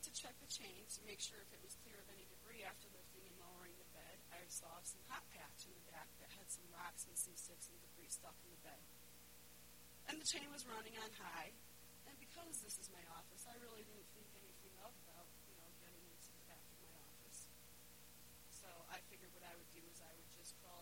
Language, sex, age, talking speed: English, female, 40-59, 235 wpm